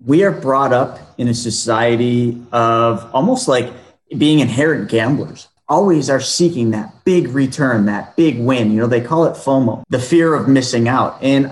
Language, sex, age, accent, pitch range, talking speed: English, male, 30-49, American, 115-155 Hz, 175 wpm